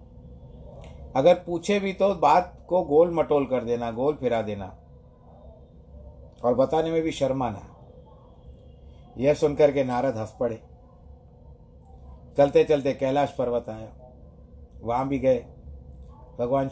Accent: native